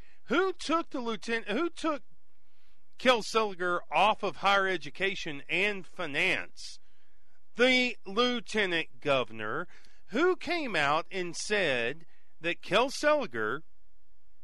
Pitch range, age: 150-230 Hz, 40-59